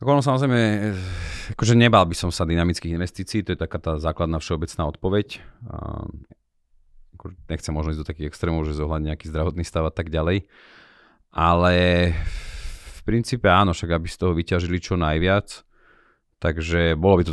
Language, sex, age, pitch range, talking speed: Slovak, male, 30-49, 80-95 Hz, 160 wpm